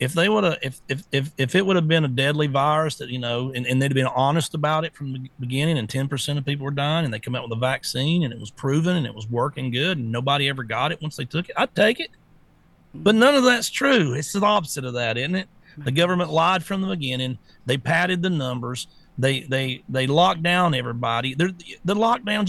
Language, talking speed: English, 250 wpm